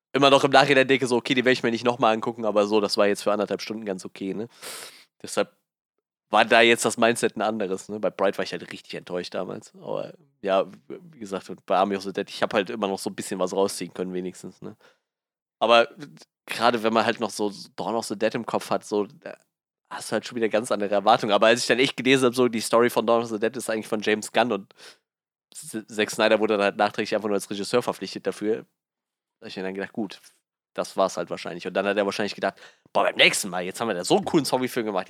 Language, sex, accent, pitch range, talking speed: German, male, German, 100-120 Hz, 260 wpm